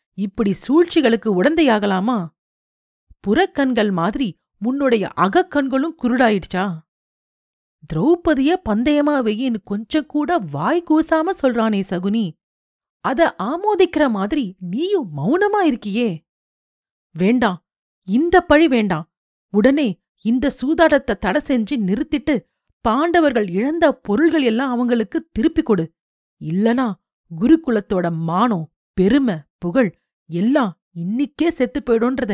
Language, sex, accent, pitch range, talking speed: Tamil, female, native, 190-295 Hz, 85 wpm